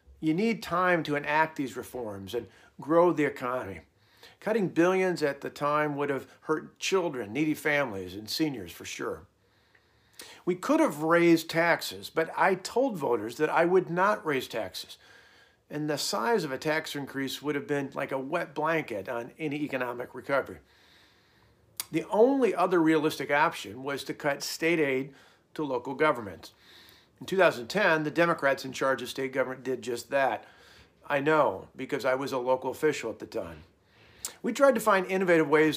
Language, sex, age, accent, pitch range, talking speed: English, male, 50-69, American, 135-170 Hz, 170 wpm